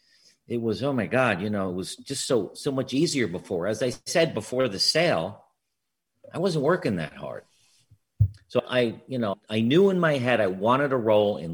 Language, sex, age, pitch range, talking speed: English, male, 50-69, 105-135 Hz, 210 wpm